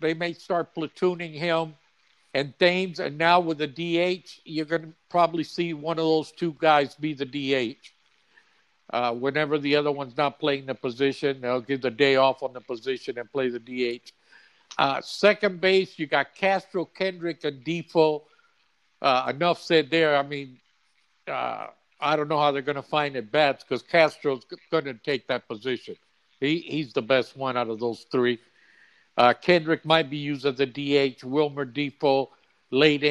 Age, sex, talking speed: 60-79, male, 175 wpm